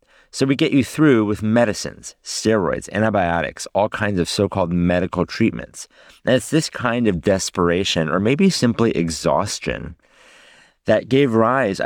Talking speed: 140 wpm